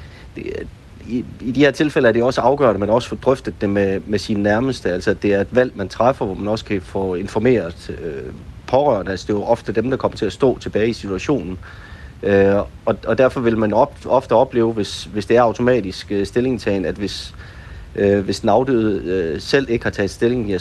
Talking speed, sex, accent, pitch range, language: 220 wpm, male, native, 95-110 Hz, Danish